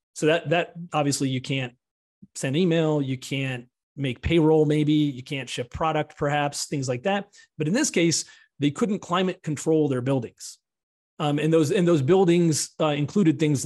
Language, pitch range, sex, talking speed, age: English, 125-155 Hz, male, 175 wpm, 30-49